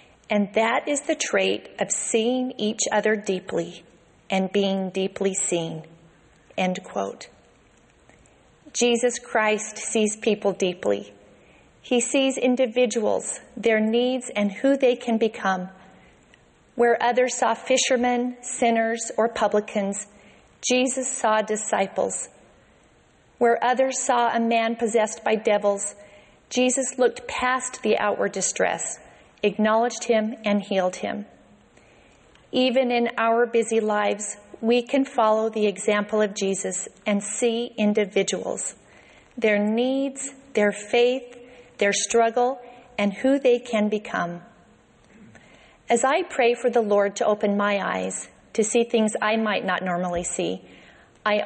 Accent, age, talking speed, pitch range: American, 40-59, 120 wpm, 200-245 Hz